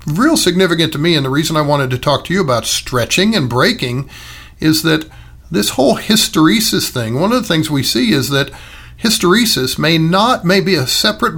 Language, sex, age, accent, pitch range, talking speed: English, male, 50-69, American, 125-170 Hz, 200 wpm